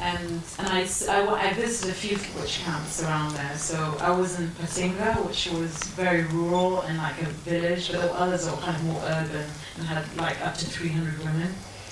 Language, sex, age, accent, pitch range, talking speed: English, female, 30-49, British, 165-195 Hz, 215 wpm